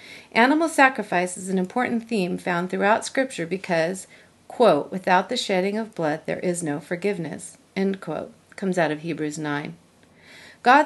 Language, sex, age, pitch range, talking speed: English, female, 40-59, 175-230 Hz, 155 wpm